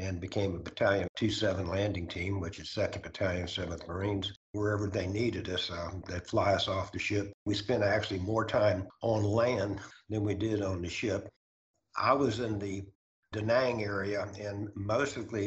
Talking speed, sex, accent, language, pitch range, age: 180 wpm, male, American, English, 95-110 Hz, 60-79